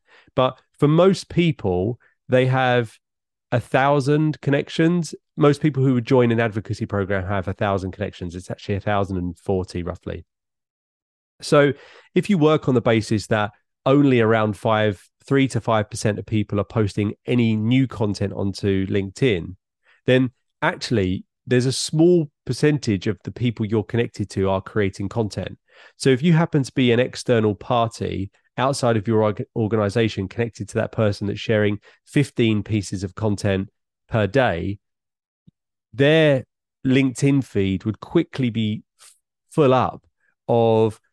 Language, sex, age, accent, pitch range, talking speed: English, male, 30-49, British, 100-130 Hz, 145 wpm